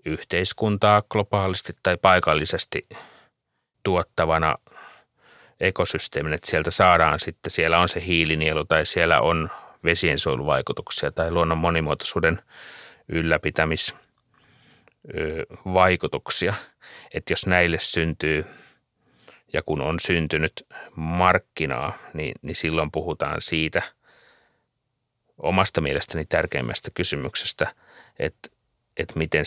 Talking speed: 90 wpm